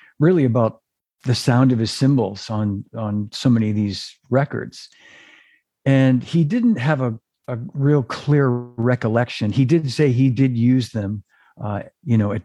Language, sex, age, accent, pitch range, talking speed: English, male, 50-69, American, 105-135 Hz, 165 wpm